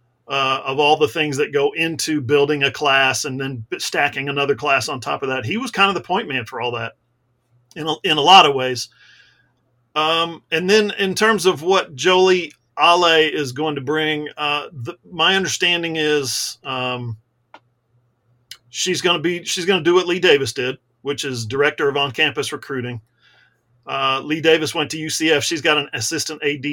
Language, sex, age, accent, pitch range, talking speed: English, male, 40-59, American, 135-175 Hz, 185 wpm